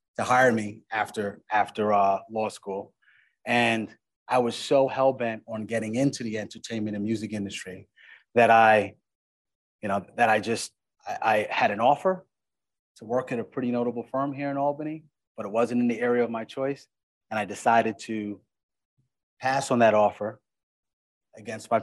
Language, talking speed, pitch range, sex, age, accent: English, 175 wpm, 105-130 Hz, male, 30-49, American